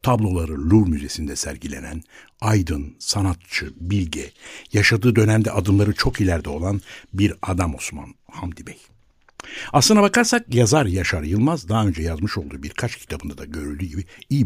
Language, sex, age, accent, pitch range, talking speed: Turkish, male, 60-79, native, 85-115 Hz, 135 wpm